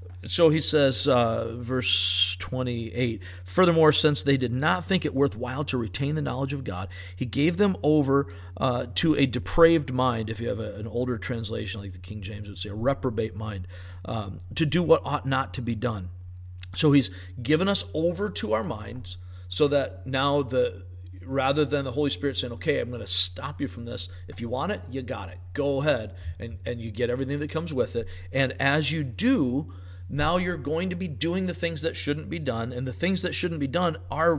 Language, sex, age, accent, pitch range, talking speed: English, male, 50-69, American, 95-150 Hz, 215 wpm